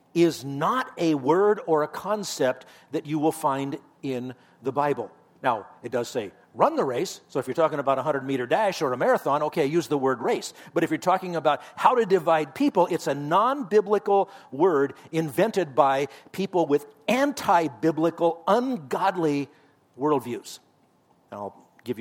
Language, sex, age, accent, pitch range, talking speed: English, male, 50-69, American, 125-165 Hz, 165 wpm